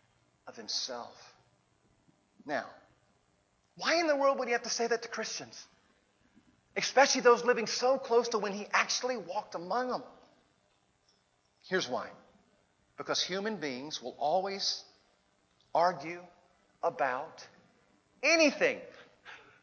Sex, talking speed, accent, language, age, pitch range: male, 115 wpm, American, English, 40-59, 160-245 Hz